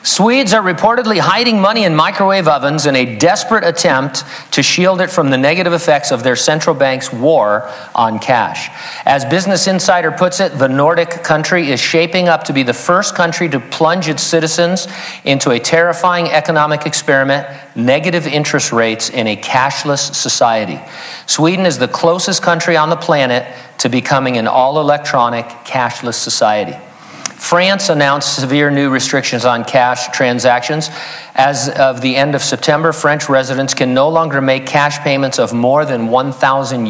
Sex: male